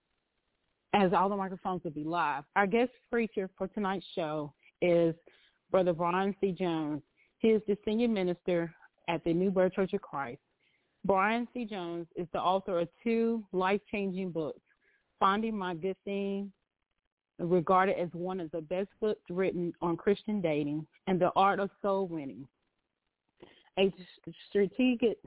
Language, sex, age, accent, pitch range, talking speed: English, female, 30-49, American, 175-205 Hz, 150 wpm